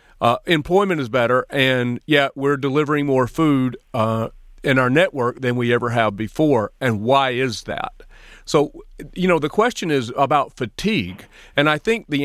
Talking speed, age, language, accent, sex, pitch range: 170 wpm, 40-59, English, American, male, 130-165 Hz